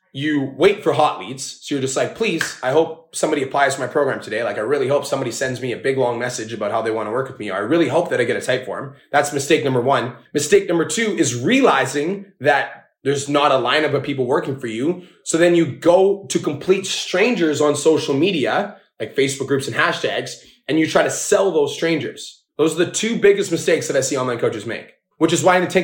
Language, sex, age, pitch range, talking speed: English, male, 20-39, 135-165 Hz, 240 wpm